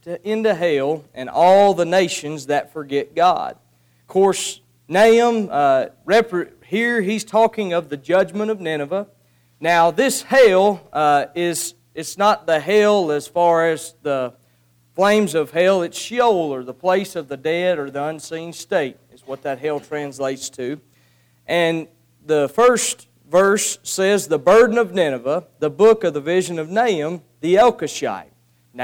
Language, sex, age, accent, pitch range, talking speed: English, male, 40-59, American, 145-205 Hz, 150 wpm